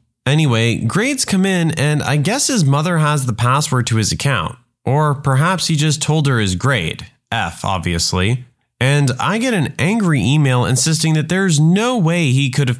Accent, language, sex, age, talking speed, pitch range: American, English, male, 30-49, 185 wpm, 125-165 Hz